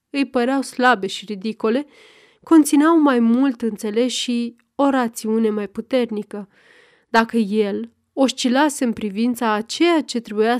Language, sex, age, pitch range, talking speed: Romanian, female, 20-39, 215-270 Hz, 130 wpm